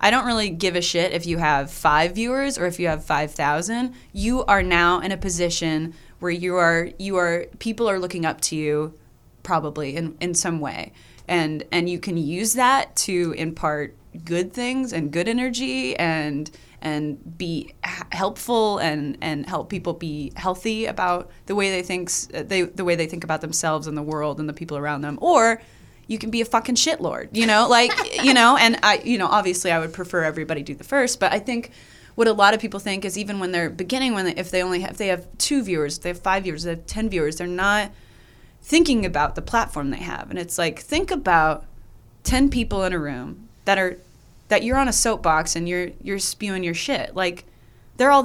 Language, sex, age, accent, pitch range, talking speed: English, female, 20-39, American, 160-220 Hz, 215 wpm